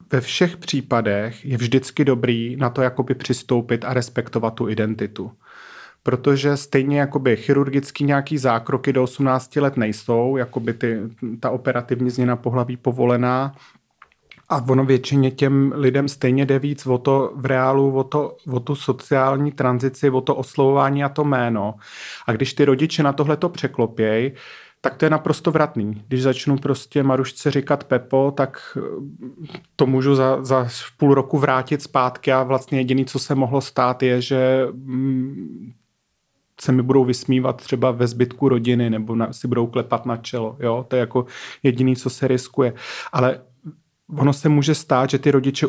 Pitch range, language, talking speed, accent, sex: 125-140 Hz, Czech, 155 wpm, native, male